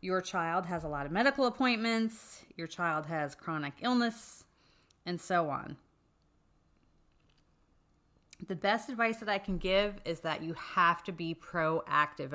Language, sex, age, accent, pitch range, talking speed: English, female, 30-49, American, 165-195 Hz, 145 wpm